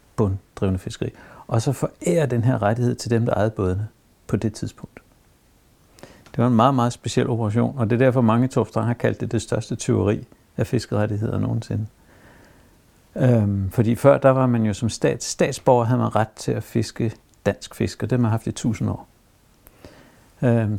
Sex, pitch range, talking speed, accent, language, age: male, 105-130 Hz, 195 wpm, native, Danish, 60-79